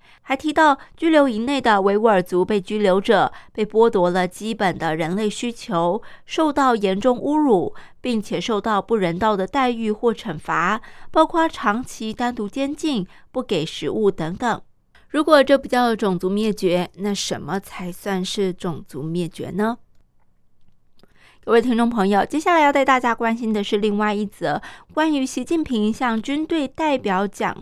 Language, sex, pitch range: Chinese, female, 190-250 Hz